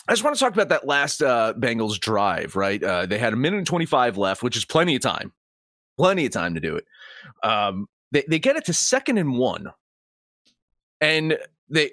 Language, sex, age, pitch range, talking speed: English, male, 30-49, 145-220 Hz, 210 wpm